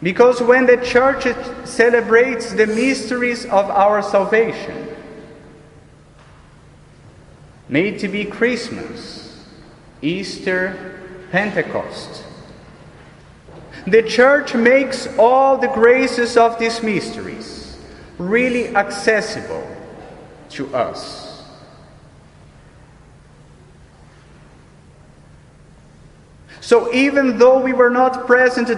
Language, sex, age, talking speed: English, male, 30-49, 75 wpm